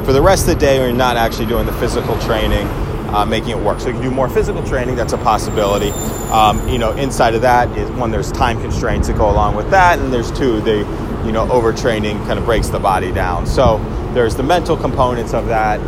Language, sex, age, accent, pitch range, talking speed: English, male, 20-39, American, 95-115 Hz, 240 wpm